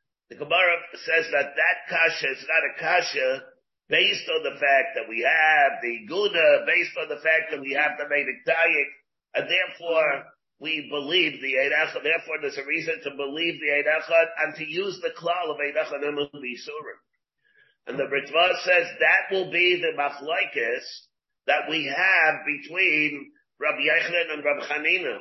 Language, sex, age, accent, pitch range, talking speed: English, male, 50-69, American, 150-230 Hz, 165 wpm